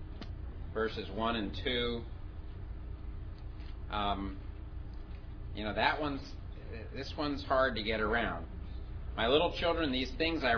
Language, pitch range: English, 90-120 Hz